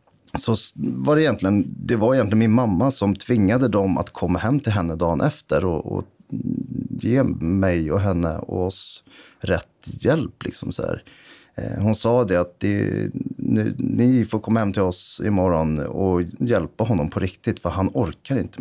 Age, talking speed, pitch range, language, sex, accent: 30-49, 170 wpm, 90-120 Hz, English, male, Swedish